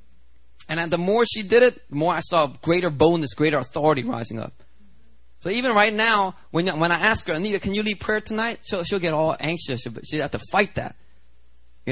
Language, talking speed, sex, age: English, 225 wpm, male, 30-49